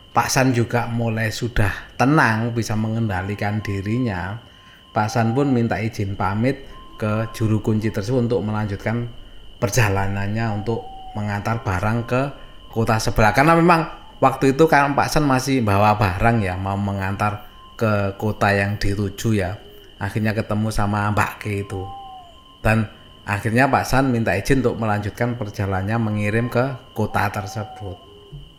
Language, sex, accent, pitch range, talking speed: Indonesian, male, native, 105-130 Hz, 135 wpm